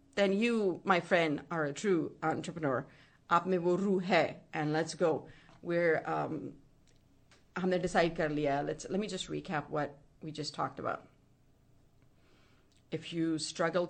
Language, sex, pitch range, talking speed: English, female, 160-210 Hz, 110 wpm